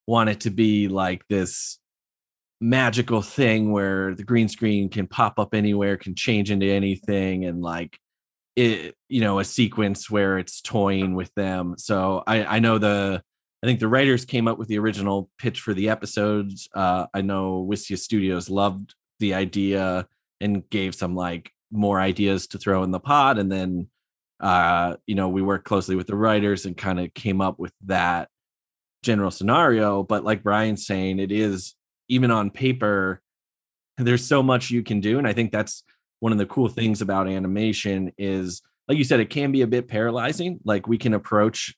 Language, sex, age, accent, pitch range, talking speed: English, male, 30-49, American, 95-110 Hz, 185 wpm